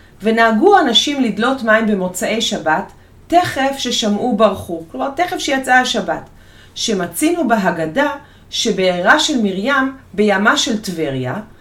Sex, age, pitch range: female, 30-49, 205-295 Hz